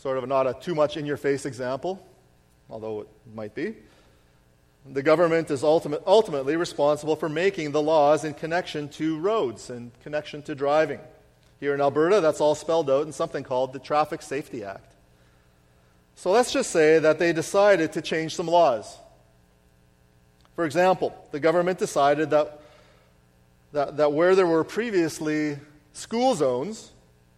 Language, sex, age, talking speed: English, male, 40-59, 145 wpm